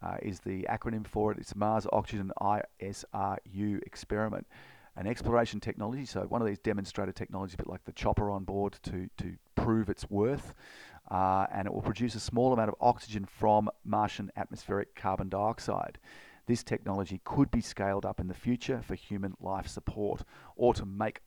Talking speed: 180 wpm